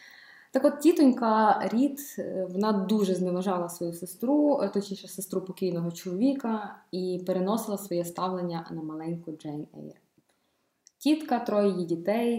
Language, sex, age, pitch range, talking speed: Ukrainian, female, 20-39, 180-235 Hz, 120 wpm